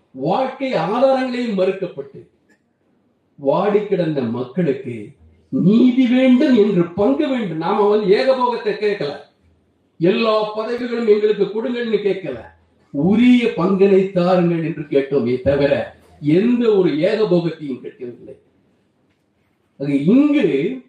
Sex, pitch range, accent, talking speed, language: male, 140-235 Hz, native, 85 wpm, Tamil